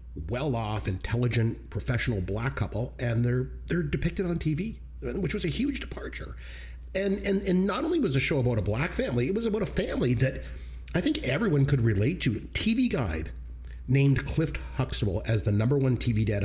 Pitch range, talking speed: 95-145 Hz, 195 wpm